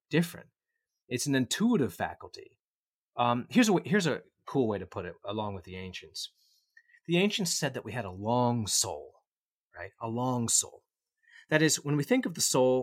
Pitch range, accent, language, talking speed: 105-155 Hz, American, English, 190 wpm